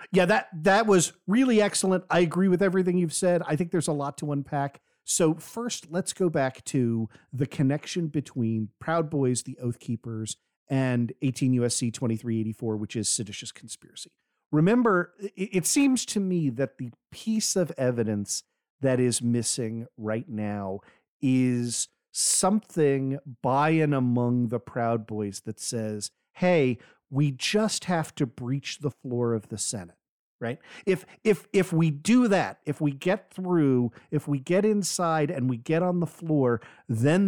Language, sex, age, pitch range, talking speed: English, male, 40-59, 120-180 Hz, 160 wpm